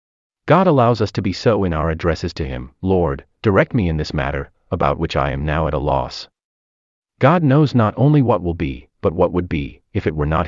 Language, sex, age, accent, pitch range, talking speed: English, male, 30-49, American, 70-115 Hz, 230 wpm